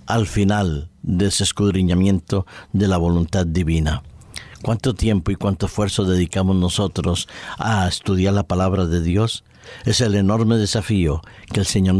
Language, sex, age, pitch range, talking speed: Spanish, male, 50-69, 90-110 Hz, 145 wpm